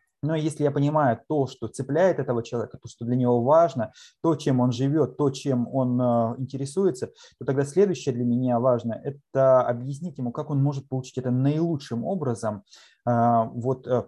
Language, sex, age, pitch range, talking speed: Russian, male, 20-39, 120-145 Hz, 165 wpm